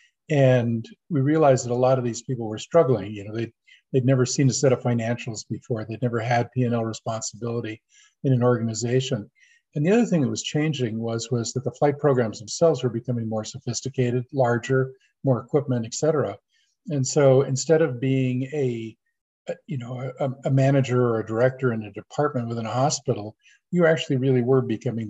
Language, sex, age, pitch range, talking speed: English, male, 50-69, 115-135 Hz, 190 wpm